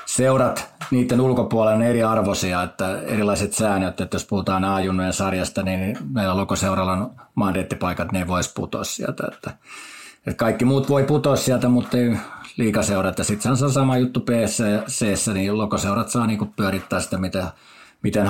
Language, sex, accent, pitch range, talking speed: Finnish, male, native, 95-120 Hz, 160 wpm